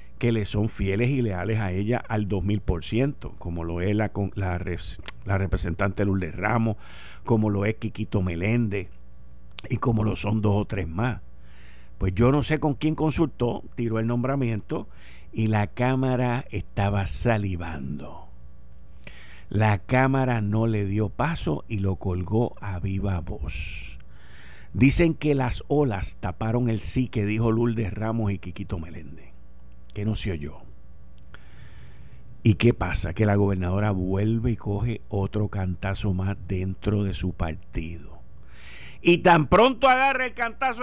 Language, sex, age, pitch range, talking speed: Spanish, male, 50-69, 80-130 Hz, 145 wpm